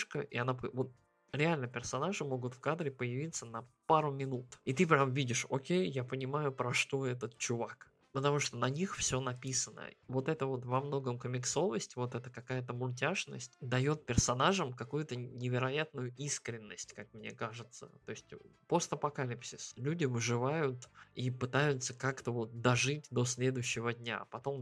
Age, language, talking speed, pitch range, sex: 20-39, Russian, 155 wpm, 120-140 Hz, male